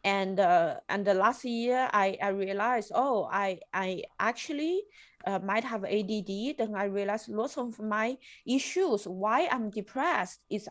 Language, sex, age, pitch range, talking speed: English, female, 20-39, 195-250 Hz, 155 wpm